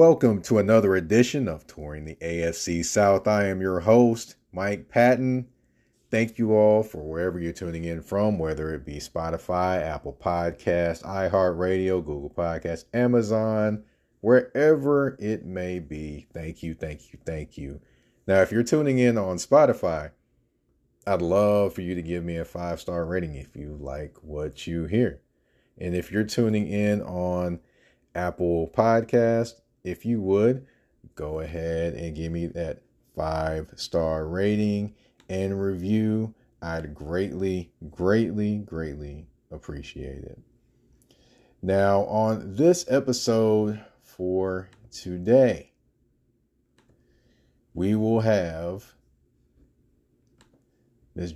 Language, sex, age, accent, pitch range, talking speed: English, male, 30-49, American, 85-110 Hz, 125 wpm